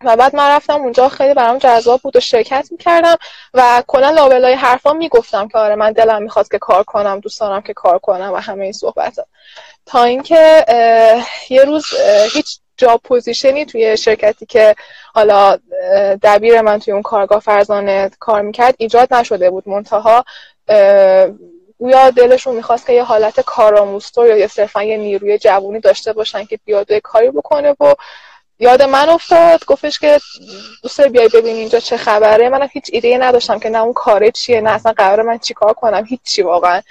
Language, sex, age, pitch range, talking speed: Persian, female, 10-29, 215-280 Hz, 170 wpm